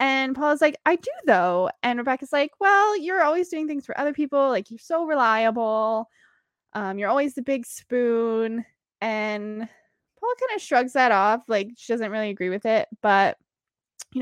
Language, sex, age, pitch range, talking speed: English, female, 20-39, 205-295 Hz, 180 wpm